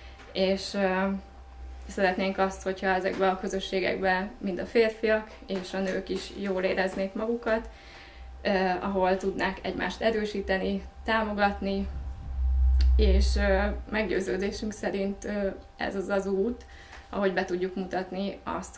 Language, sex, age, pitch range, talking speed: English, female, 20-39, 180-200 Hz, 120 wpm